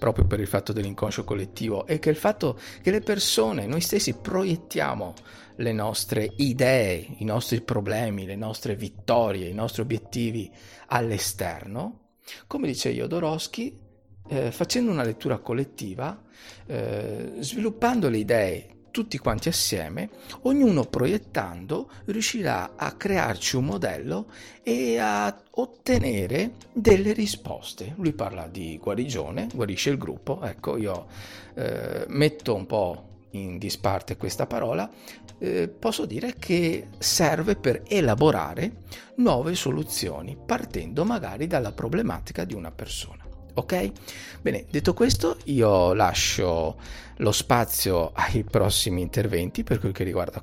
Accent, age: native, 50-69